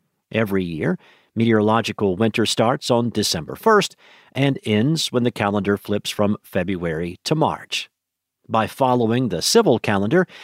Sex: male